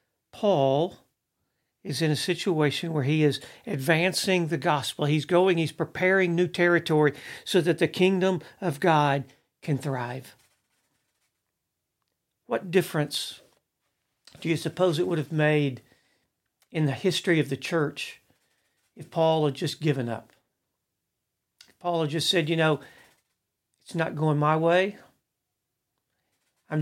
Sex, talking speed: male, 130 wpm